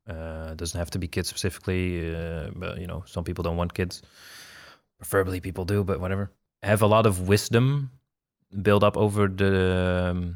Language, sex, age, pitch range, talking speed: English, male, 20-39, 85-100 Hz, 180 wpm